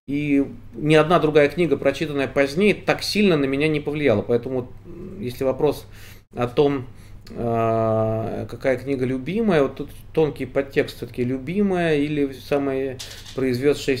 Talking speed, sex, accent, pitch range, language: 130 wpm, male, native, 105-145 Hz, Russian